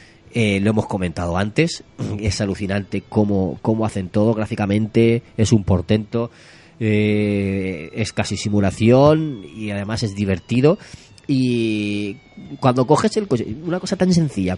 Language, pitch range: Spanish, 100-125 Hz